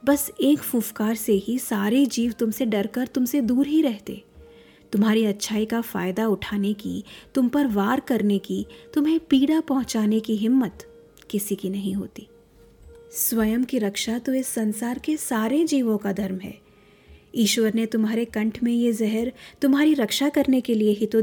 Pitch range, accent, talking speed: 215-275 Hz, native, 165 wpm